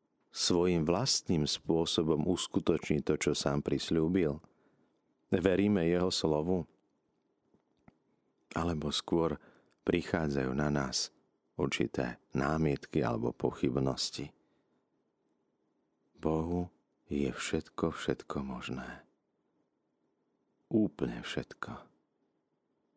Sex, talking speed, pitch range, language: male, 70 wpm, 70-85 Hz, Slovak